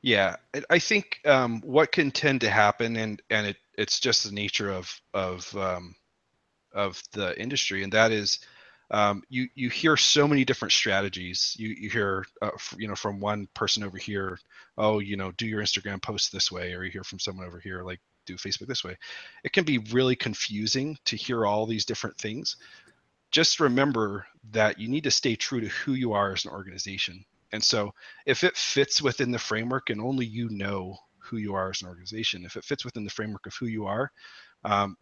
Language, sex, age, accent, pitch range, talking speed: English, male, 30-49, American, 100-125 Hz, 205 wpm